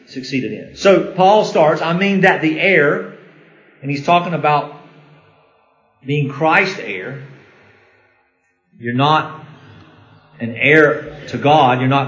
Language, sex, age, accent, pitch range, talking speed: English, male, 40-59, American, 135-175 Hz, 125 wpm